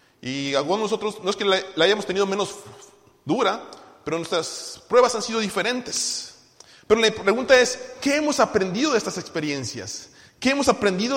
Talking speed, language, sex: 165 wpm, Spanish, male